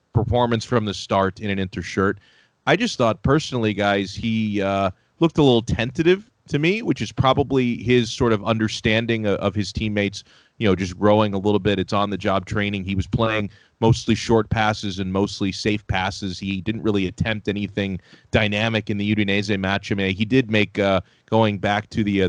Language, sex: English, male